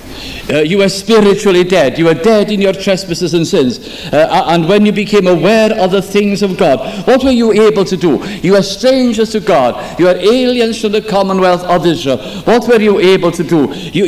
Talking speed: 215 wpm